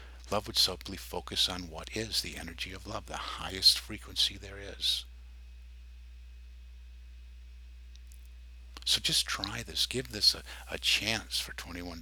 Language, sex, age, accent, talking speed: English, male, 50-69, American, 135 wpm